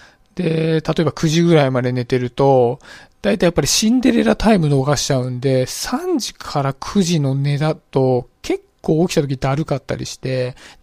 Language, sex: Japanese, male